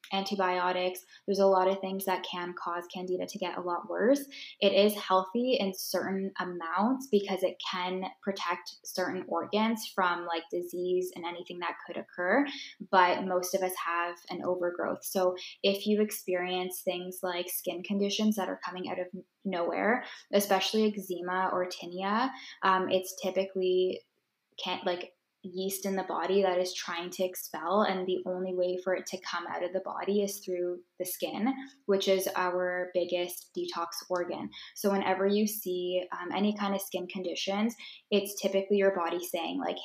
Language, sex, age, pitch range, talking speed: English, female, 10-29, 180-200 Hz, 170 wpm